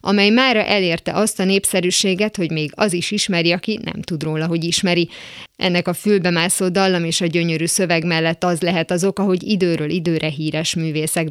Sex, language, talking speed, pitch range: female, Hungarian, 190 wpm, 160-185 Hz